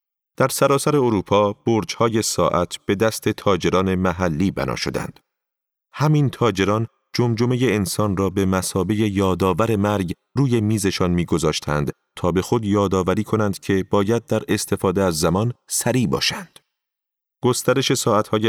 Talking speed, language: 125 wpm, Persian